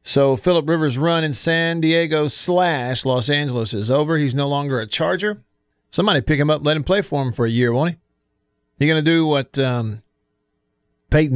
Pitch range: 130-160 Hz